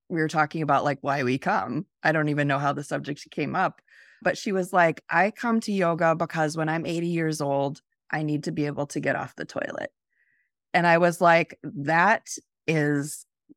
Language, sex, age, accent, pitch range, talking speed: English, female, 30-49, American, 145-175 Hz, 210 wpm